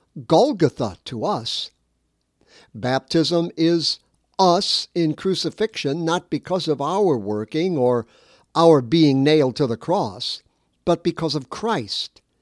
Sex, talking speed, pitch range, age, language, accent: male, 115 wpm, 130-180 Hz, 60-79, English, American